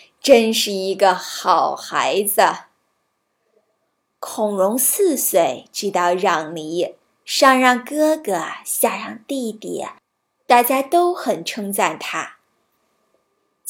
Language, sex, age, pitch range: Chinese, female, 20-39, 215-290 Hz